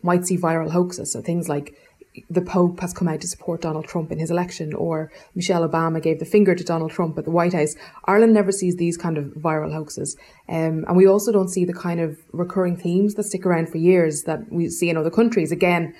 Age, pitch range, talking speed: 20-39, 165-190 Hz, 235 wpm